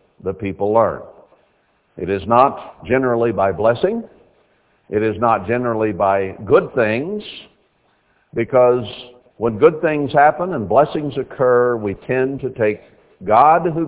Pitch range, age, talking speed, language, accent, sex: 105-130 Hz, 60-79, 130 wpm, English, American, male